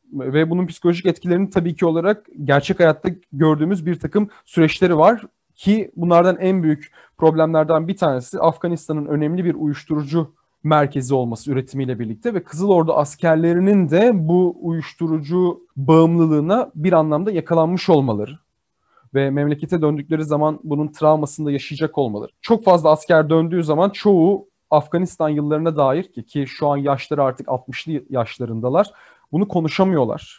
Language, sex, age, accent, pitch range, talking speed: Turkish, male, 30-49, native, 130-170 Hz, 135 wpm